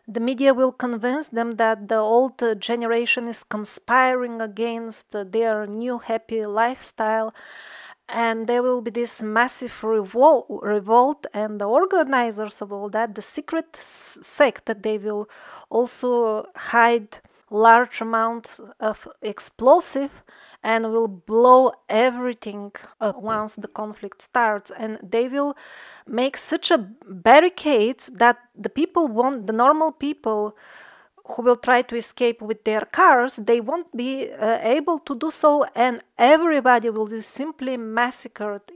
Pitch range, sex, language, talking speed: 215-260 Hz, female, English, 130 wpm